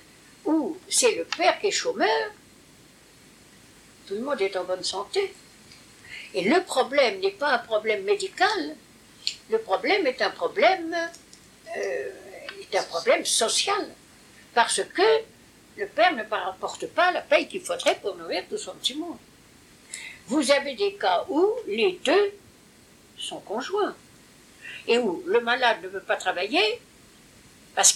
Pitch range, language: 240-400 Hz, English